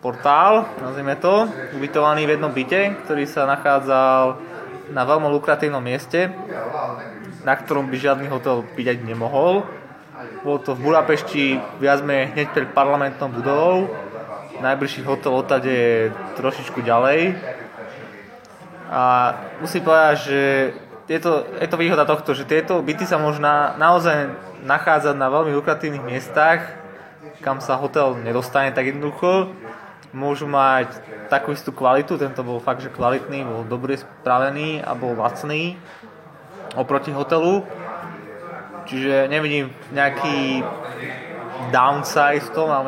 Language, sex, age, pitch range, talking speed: Slovak, male, 20-39, 130-155 Hz, 125 wpm